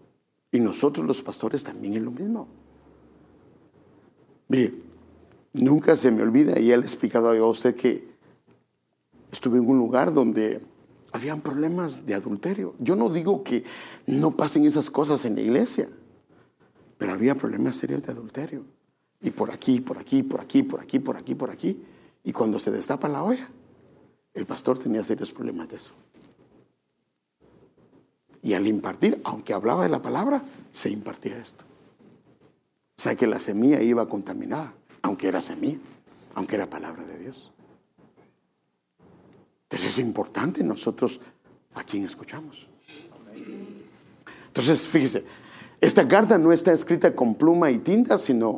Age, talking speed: 60-79, 145 wpm